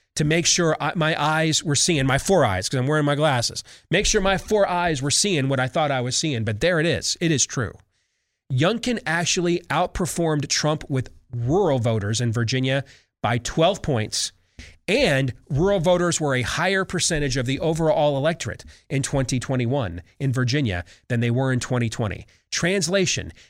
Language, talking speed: English, 175 wpm